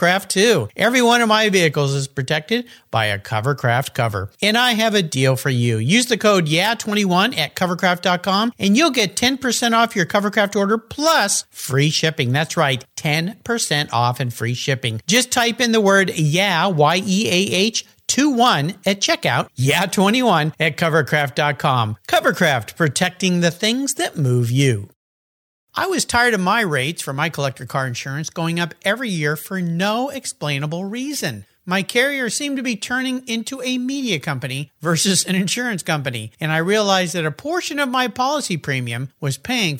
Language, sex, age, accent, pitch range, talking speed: English, male, 50-69, American, 140-220 Hz, 165 wpm